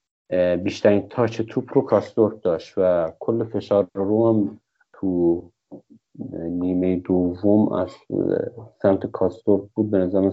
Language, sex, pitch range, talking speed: Persian, male, 100-115 Hz, 110 wpm